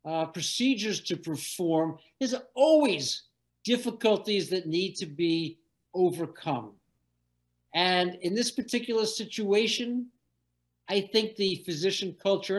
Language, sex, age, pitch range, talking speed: English, male, 50-69, 155-220 Hz, 105 wpm